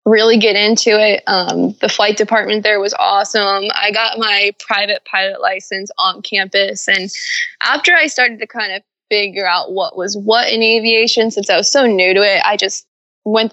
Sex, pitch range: female, 200-235 Hz